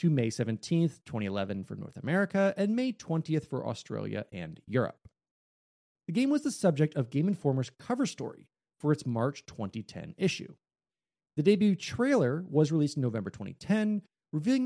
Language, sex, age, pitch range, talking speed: English, male, 30-49, 120-185 Hz, 155 wpm